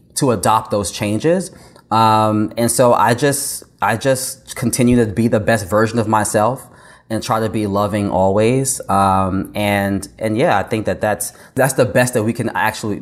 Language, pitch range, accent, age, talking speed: English, 105-125 Hz, American, 20-39, 185 wpm